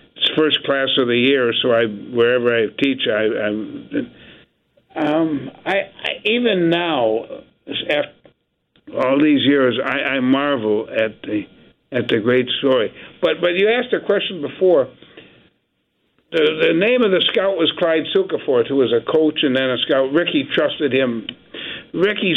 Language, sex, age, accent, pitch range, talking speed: English, male, 60-79, American, 130-175 Hz, 155 wpm